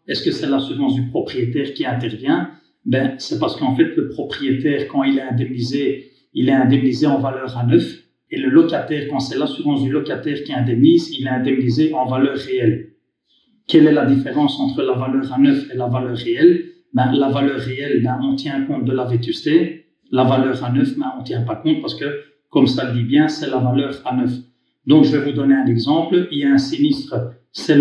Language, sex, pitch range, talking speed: French, male, 130-155 Hz, 220 wpm